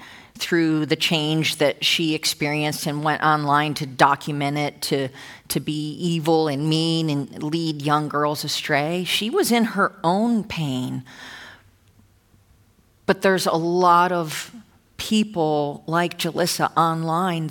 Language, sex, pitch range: English, female, 150-185 Hz